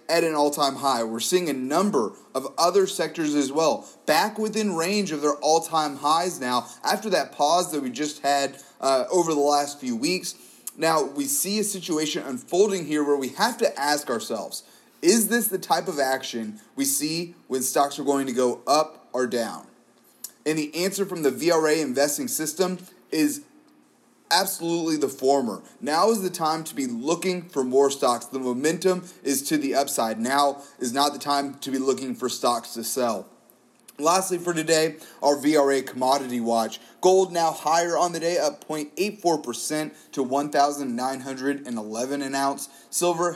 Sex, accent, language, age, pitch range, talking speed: male, American, English, 30-49, 135-175 Hz, 170 wpm